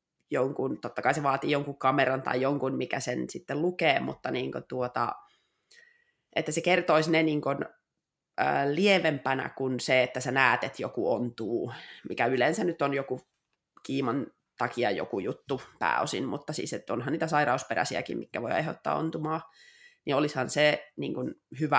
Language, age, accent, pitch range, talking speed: Finnish, 20-39, native, 140-165 Hz, 155 wpm